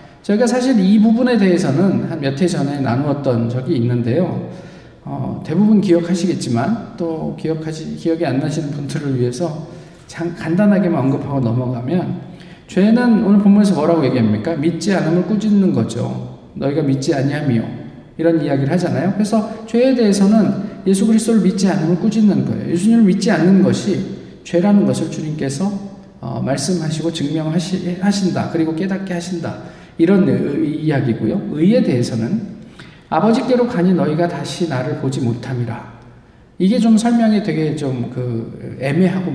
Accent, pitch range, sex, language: native, 145-200 Hz, male, Korean